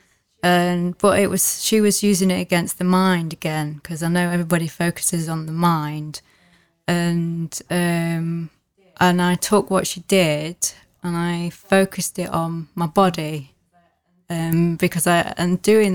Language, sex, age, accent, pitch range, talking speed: English, female, 20-39, British, 160-180 Hz, 150 wpm